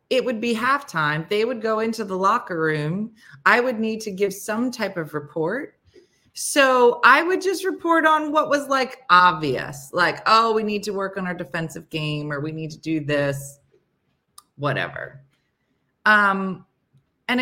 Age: 30-49